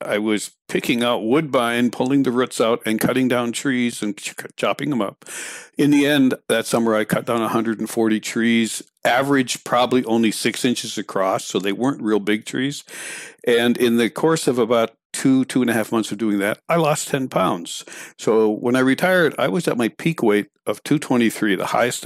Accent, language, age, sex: American, English, 60-79, male